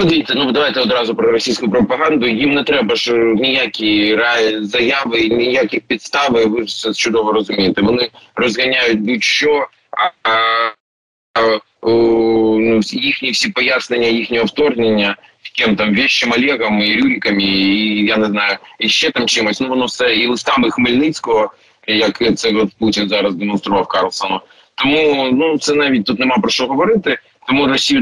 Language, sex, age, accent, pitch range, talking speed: Ukrainian, male, 20-39, native, 105-130 Hz, 150 wpm